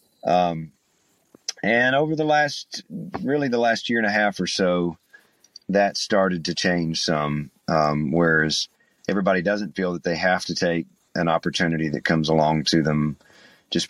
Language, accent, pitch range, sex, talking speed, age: English, American, 80-115 Hz, male, 160 wpm, 40-59